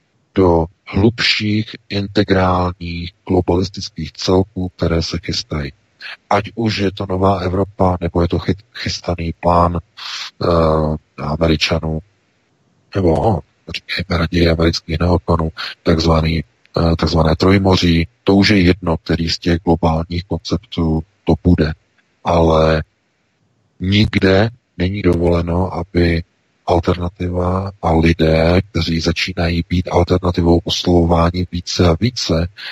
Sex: male